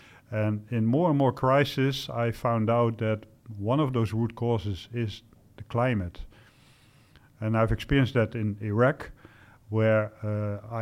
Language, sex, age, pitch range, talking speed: French, male, 50-69, 105-120 Hz, 145 wpm